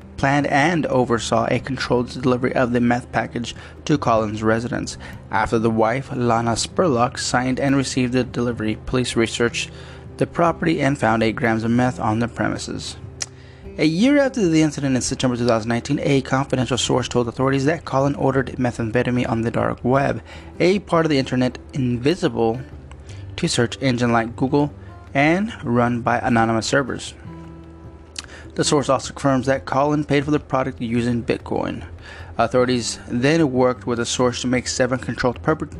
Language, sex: English, male